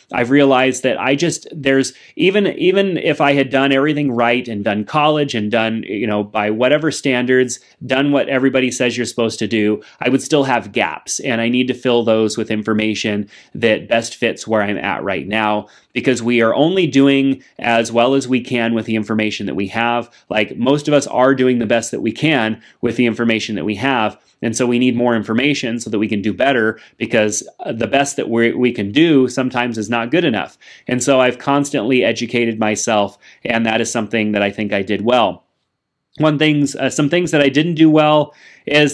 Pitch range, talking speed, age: 115-140 Hz, 215 wpm, 30-49